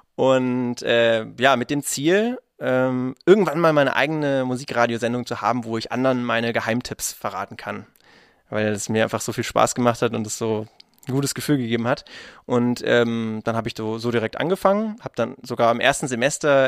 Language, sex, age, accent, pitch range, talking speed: German, male, 20-39, German, 115-145 Hz, 190 wpm